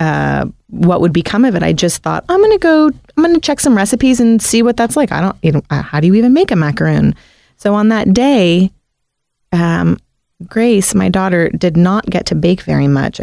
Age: 30-49